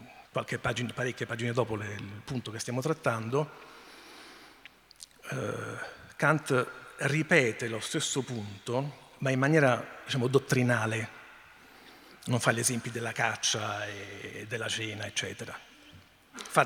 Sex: male